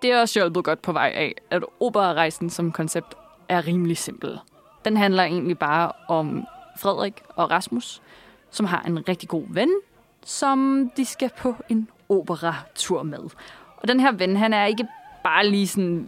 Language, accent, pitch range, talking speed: Danish, native, 175-225 Hz, 170 wpm